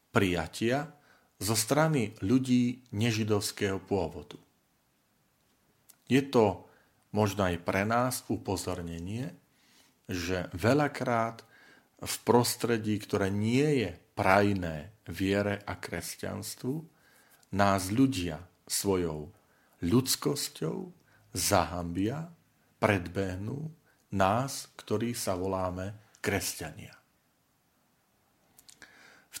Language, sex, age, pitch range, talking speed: Slovak, male, 40-59, 95-120 Hz, 70 wpm